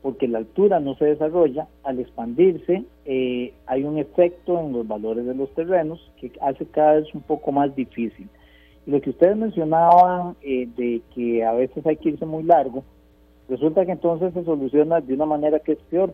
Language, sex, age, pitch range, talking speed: Spanish, male, 50-69, 120-160 Hz, 190 wpm